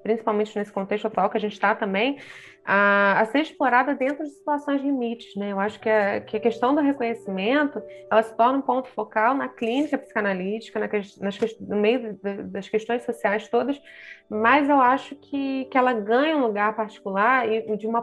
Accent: Brazilian